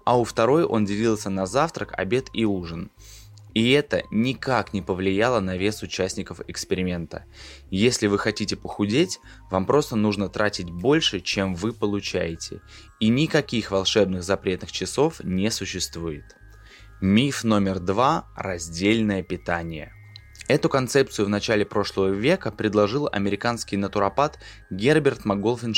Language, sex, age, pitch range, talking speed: Russian, male, 20-39, 95-115 Hz, 125 wpm